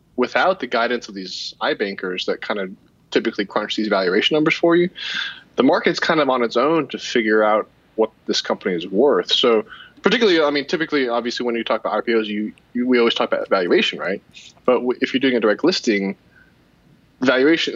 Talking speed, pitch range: 195 wpm, 110-140 Hz